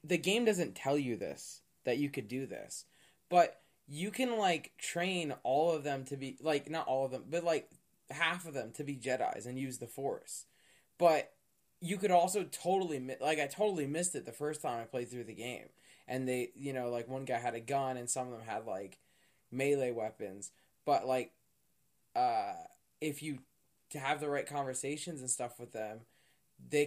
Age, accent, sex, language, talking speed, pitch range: 20-39, American, male, English, 195 wpm, 120-150 Hz